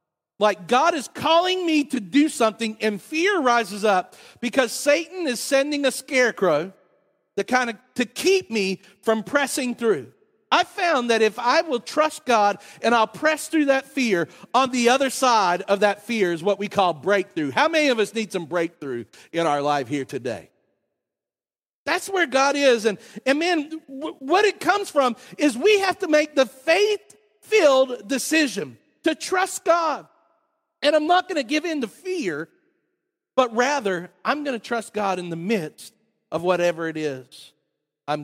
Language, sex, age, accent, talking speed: English, male, 50-69, American, 170 wpm